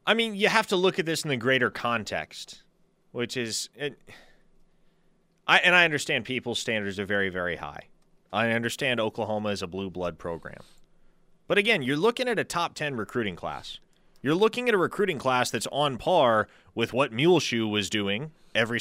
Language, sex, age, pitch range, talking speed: English, male, 30-49, 120-185 Hz, 185 wpm